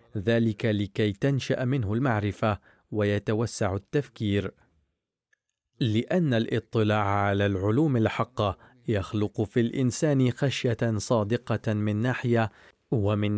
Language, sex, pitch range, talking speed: Arabic, male, 105-125 Hz, 90 wpm